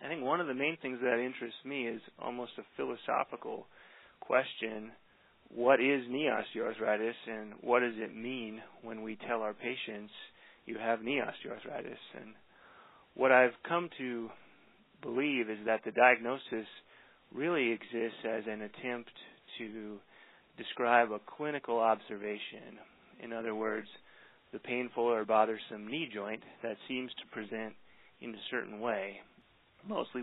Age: 30-49